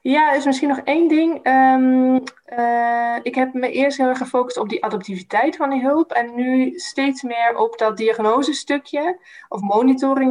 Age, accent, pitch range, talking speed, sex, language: 20-39, Dutch, 190-255 Hz, 185 wpm, female, Dutch